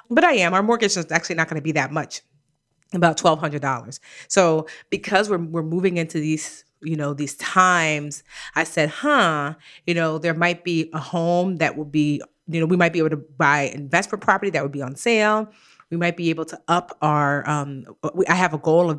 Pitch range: 150-185 Hz